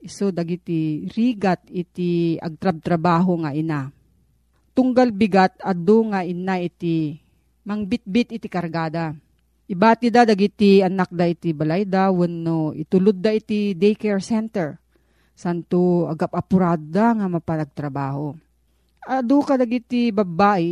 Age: 40-59